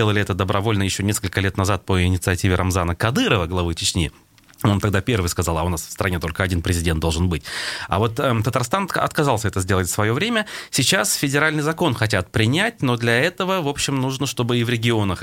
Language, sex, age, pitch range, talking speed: Russian, male, 30-49, 90-120 Hz, 205 wpm